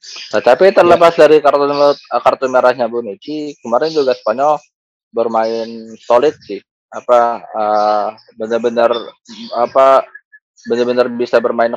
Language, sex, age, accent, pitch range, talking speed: Indonesian, male, 20-39, native, 110-140 Hz, 110 wpm